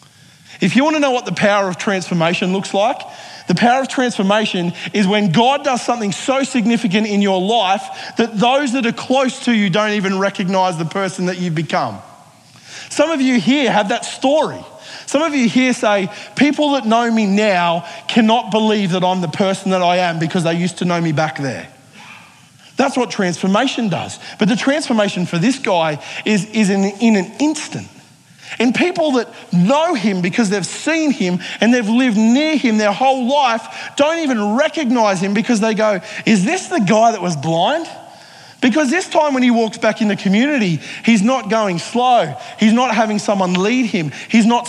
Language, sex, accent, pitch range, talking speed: English, male, Australian, 190-245 Hz, 190 wpm